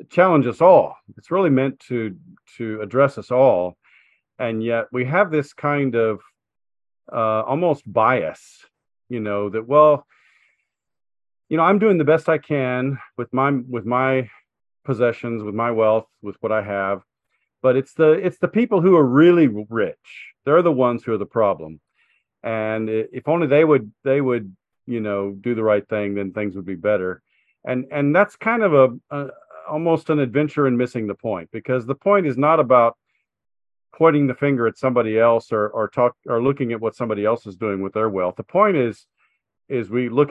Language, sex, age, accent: English, male, 40-59, American